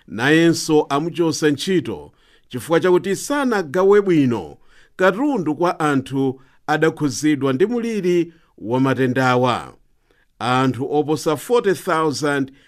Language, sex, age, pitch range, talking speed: English, male, 50-69, 135-175 Hz, 95 wpm